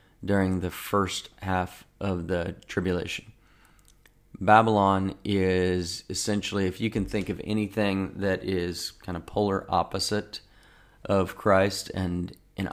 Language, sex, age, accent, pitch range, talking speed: English, male, 40-59, American, 90-100 Hz, 125 wpm